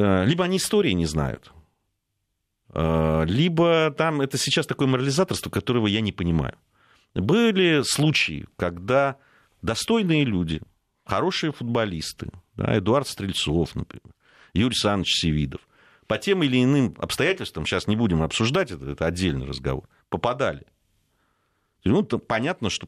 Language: Russian